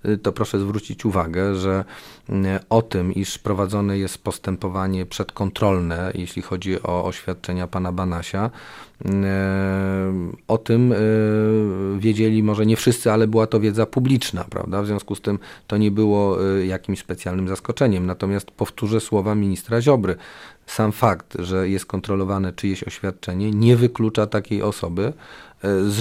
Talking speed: 130 wpm